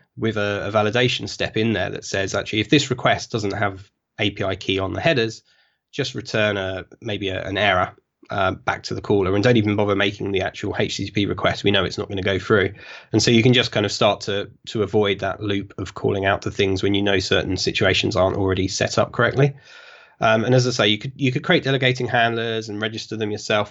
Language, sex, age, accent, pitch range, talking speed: English, male, 20-39, British, 100-120 Hz, 235 wpm